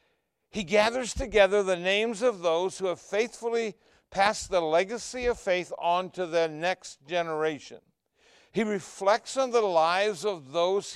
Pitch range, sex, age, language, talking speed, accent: 165-210 Hz, male, 60-79, English, 150 wpm, American